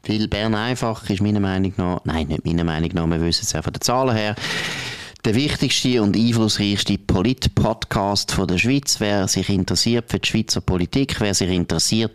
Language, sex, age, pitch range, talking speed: German, male, 30-49, 95-125 Hz, 190 wpm